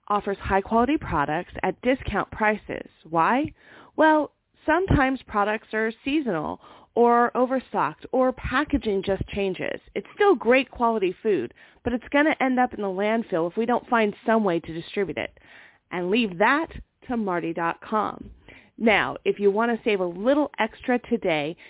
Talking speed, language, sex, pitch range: 155 wpm, English, female, 195-250 Hz